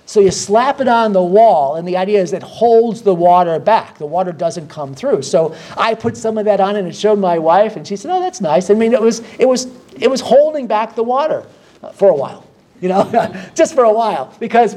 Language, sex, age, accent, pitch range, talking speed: English, male, 40-59, American, 180-220 Hz, 250 wpm